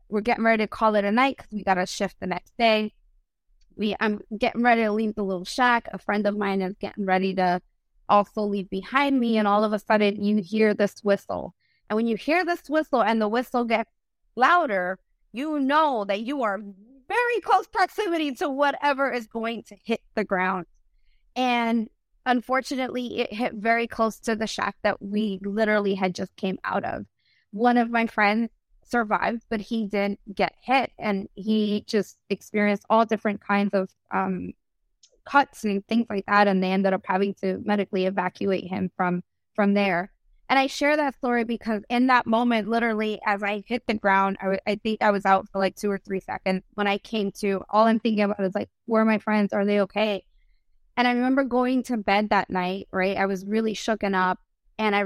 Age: 20-39